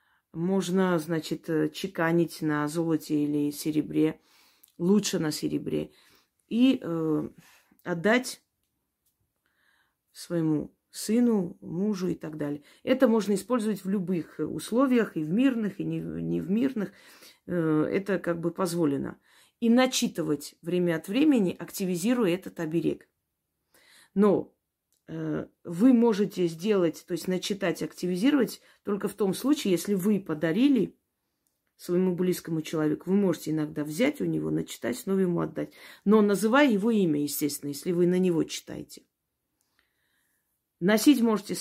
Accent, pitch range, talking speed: native, 155-205 Hz, 120 wpm